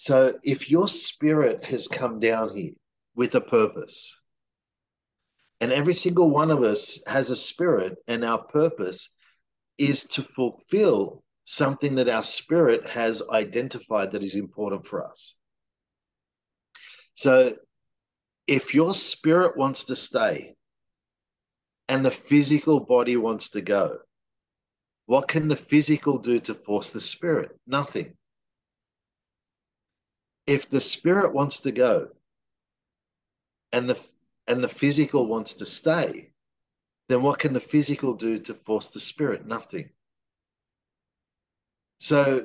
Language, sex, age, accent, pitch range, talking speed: English, male, 50-69, Australian, 115-150 Hz, 125 wpm